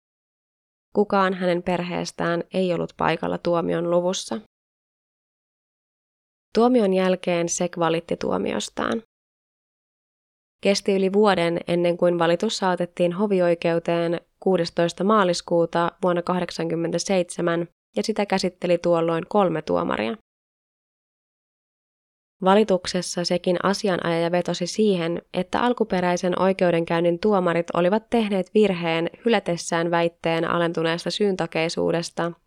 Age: 20-39